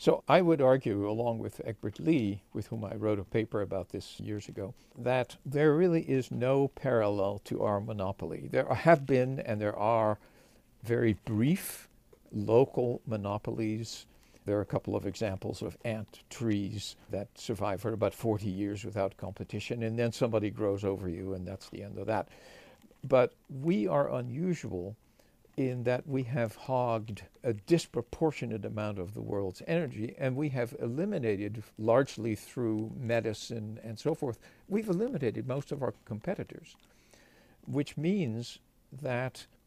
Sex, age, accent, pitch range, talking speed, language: male, 60-79, American, 105-135 Hz, 155 wpm, English